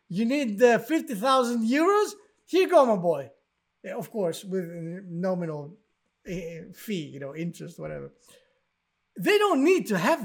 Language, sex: English, male